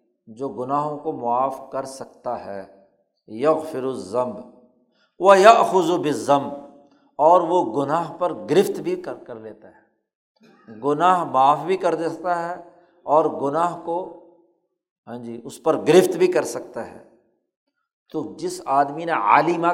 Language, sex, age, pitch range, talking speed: Urdu, male, 60-79, 140-190 Hz, 135 wpm